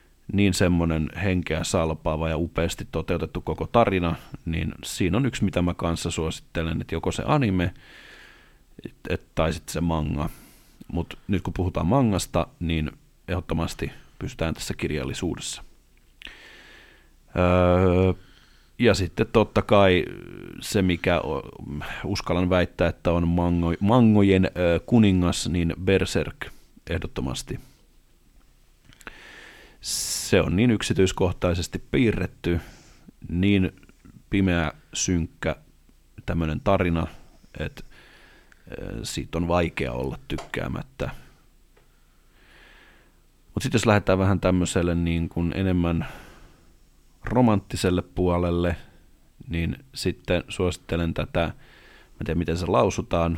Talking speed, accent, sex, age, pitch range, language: 95 wpm, native, male, 30-49, 85-95 Hz, Finnish